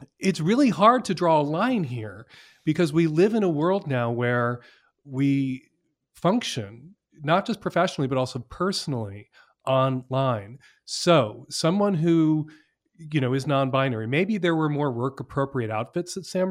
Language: English